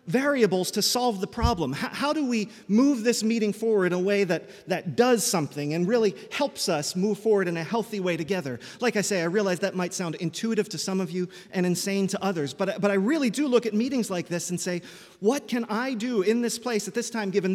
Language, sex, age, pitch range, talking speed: English, male, 30-49, 185-230 Hz, 245 wpm